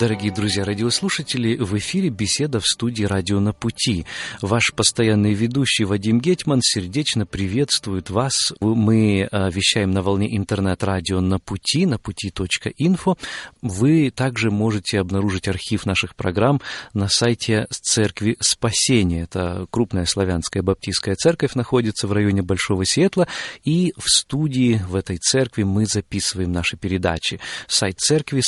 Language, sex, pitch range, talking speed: Russian, male, 95-125 Hz, 130 wpm